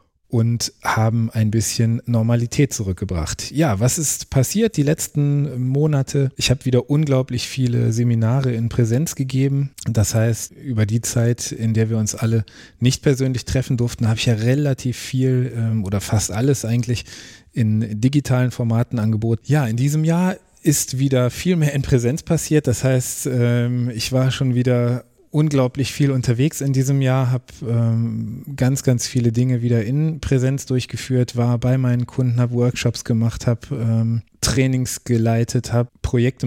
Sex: male